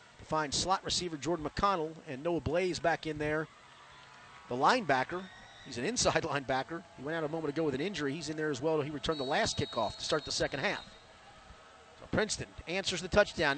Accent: American